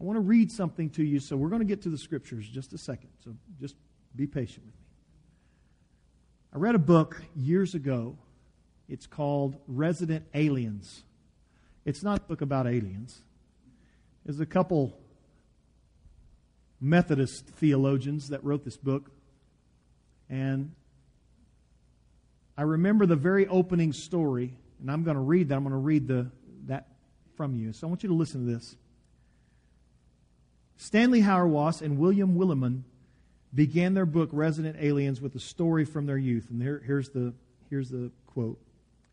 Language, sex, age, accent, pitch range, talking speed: English, male, 50-69, American, 125-175 Hz, 155 wpm